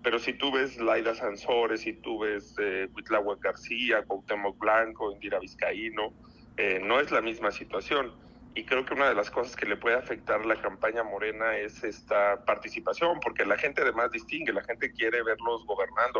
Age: 40-59